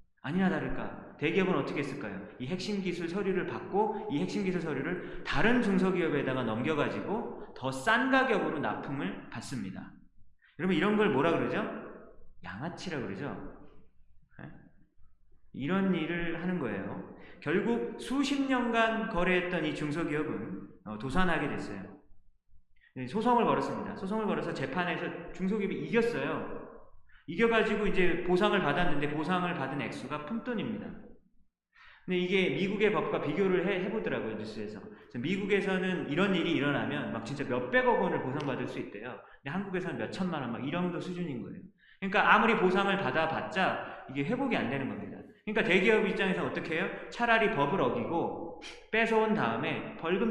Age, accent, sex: 30-49, native, male